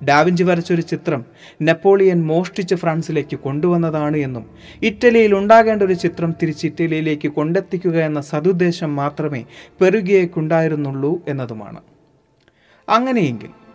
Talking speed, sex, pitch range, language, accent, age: 85 wpm, male, 140-190 Hz, Malayalam, native, 30-49